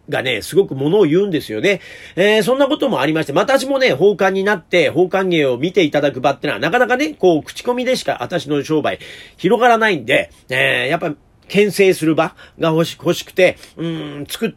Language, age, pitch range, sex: Japanese, 40-59, 140-220 Hz, male